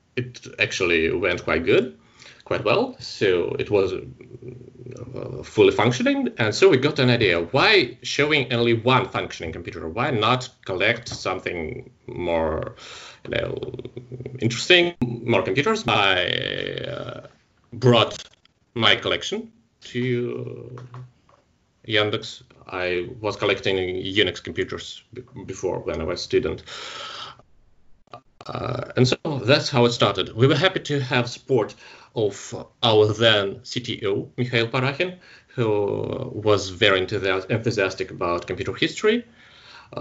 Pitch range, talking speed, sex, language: 110-180 Hz, 120 wpm, male, English